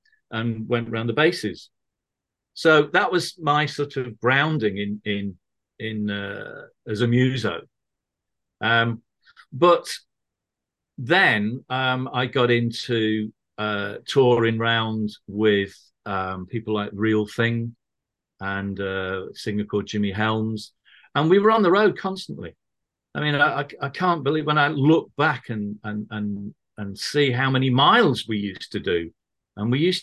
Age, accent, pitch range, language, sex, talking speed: 50-69, British, 105-150 Hz, English, male, 150 wpm